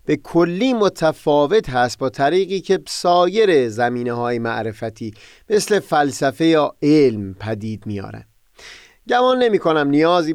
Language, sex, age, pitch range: Persian, male, 30-49, 120-180 Hz